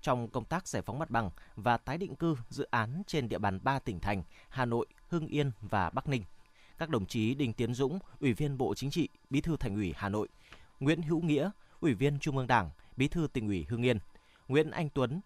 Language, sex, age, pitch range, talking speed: Vietnamese, male, 20-39, 110-145 Hz, 235 wpm